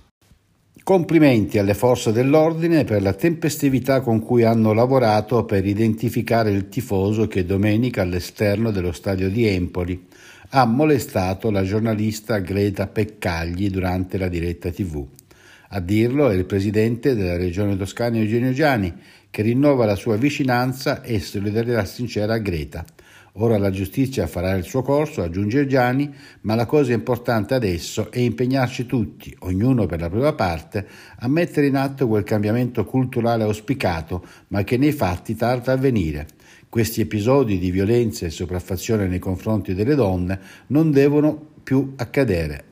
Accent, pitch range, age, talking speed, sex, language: native, 95-125 Hz, 60-79, 145 wpm, male, Italian